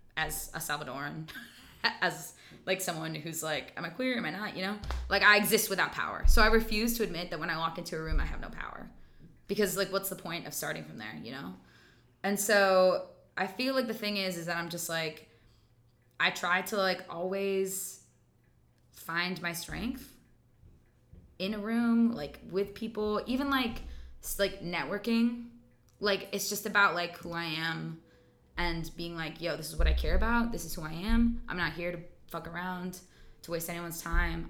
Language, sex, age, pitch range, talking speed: English, female, 20-39, 165-205 Hz, 195 wpm